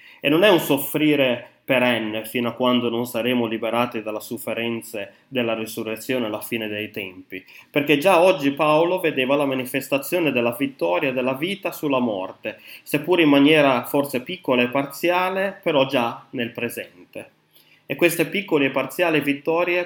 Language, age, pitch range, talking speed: Italian, 20-39, 120-155 Hz, 150 wpm